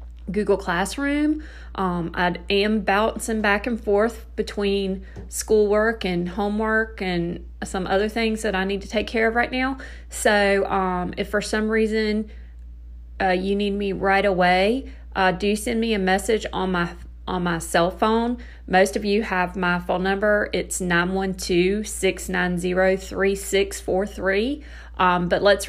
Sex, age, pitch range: female, 40-59, 180-215 Hz